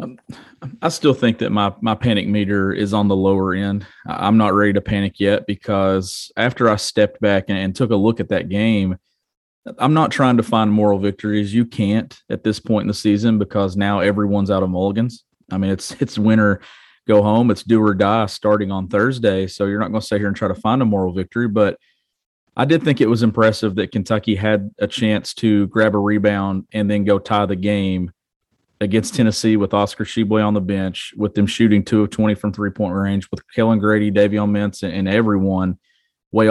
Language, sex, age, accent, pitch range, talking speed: English, male, 30-49, American, 100-115 Hz, 210 wpm